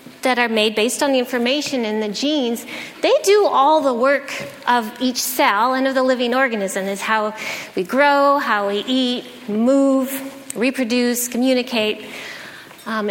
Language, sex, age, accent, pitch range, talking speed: English, female, 30-49, American, 215-275 Hz, 155 wpm